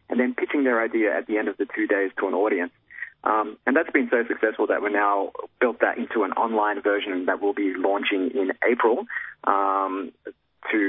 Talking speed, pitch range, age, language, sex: 210 wpm, 105-130 Hz, 30-49, English, male